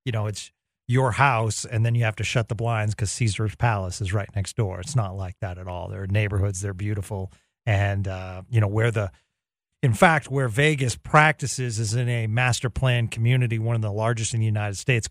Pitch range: 105-135 Hz